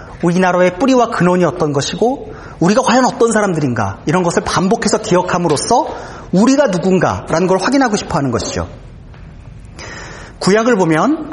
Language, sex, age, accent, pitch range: Korean, male, 40-59, native, 155-220 Hz